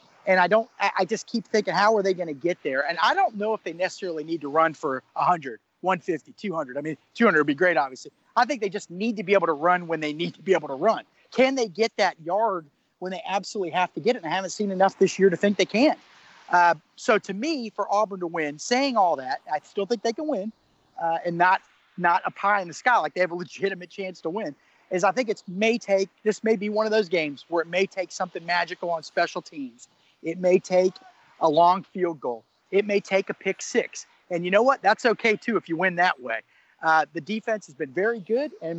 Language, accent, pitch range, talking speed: English, American, 175-215 Hz, 255 wpm